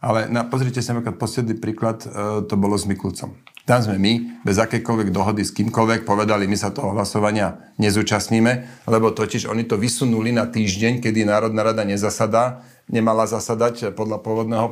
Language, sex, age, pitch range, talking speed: Slovak, male, 40-59, 105-120 Hz, 165 wpm